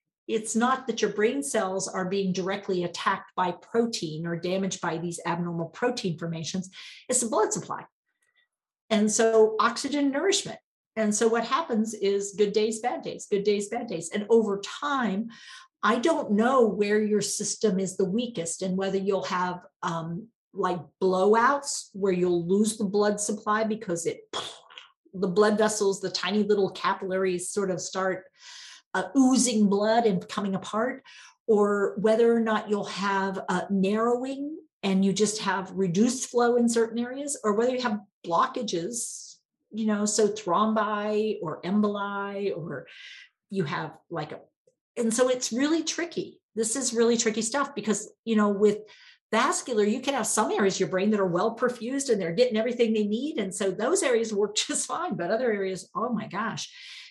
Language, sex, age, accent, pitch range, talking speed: English, female, 50-69, American, 195-240 Hz, 170 wpm